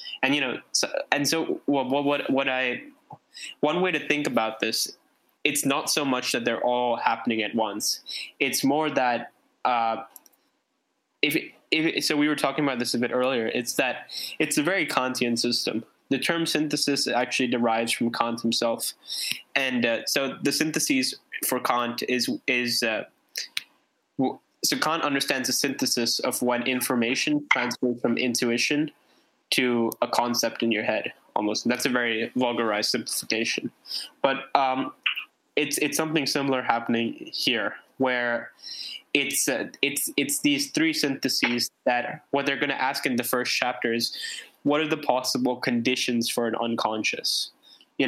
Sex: male